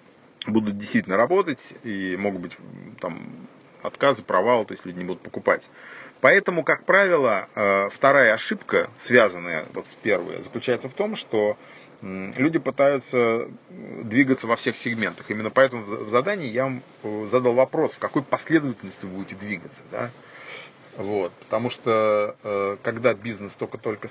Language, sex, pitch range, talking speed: Russian, male, 110-140 Hz, 135 wpm